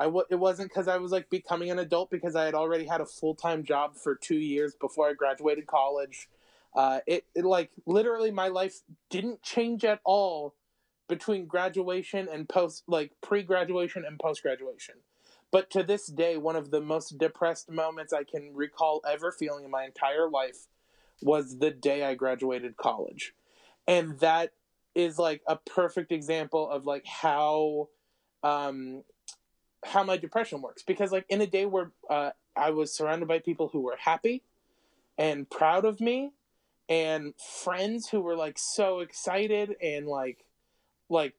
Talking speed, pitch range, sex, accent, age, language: 165 wpm, 155-190 Hz, male, American, 20-39, English